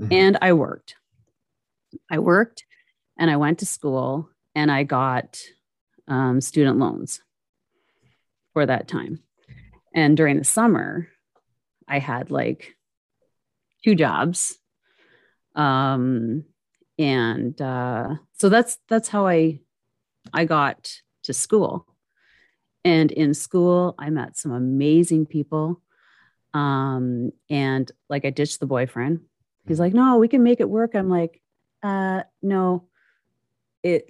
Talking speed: 120 wpm